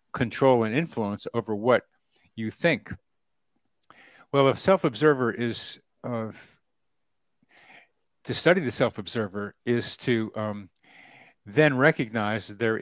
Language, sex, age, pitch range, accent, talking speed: English, male, 50-69, 110-135 Hz, American, 110 wpm